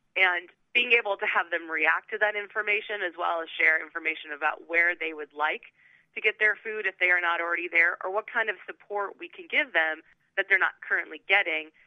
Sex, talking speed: female, 220 wpm